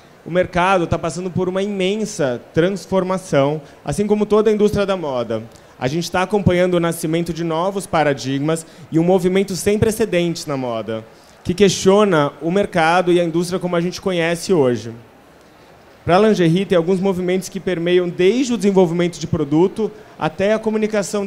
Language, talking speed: Portuguese, 165 wpm